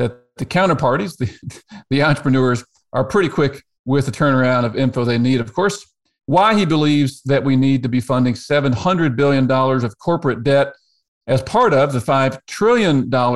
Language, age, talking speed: English, 40-59, 165 wpm